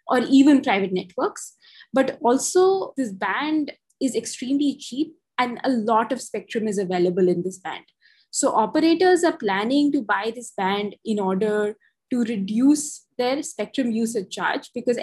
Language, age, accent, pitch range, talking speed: English, 20-39, Indian, 205-260 Hz, 150 wpm